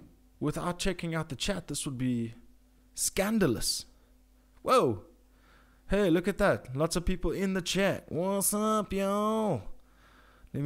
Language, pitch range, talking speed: English, 125-180 Hz, 135 wpm